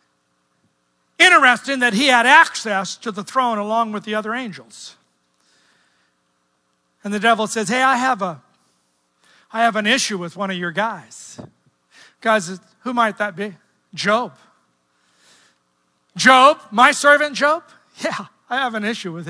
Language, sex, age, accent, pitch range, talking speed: English, male, 50-69, American, 175-265 Hz, 145 wpm